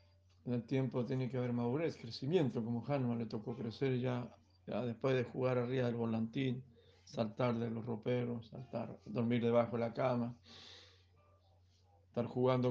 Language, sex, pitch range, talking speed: Spanish, male, 100-130 Hz, 155 wpm